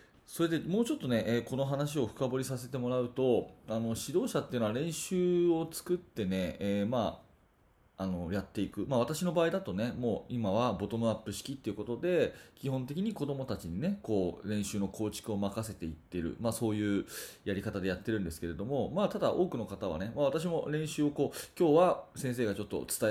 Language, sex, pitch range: Japanese, male, 100-155 Hz